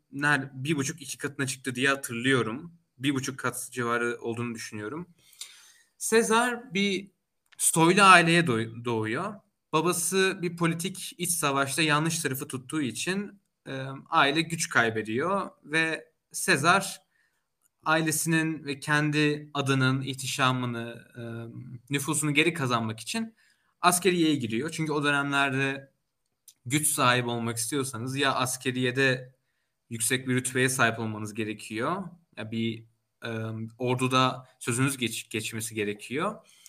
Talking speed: 105 wpm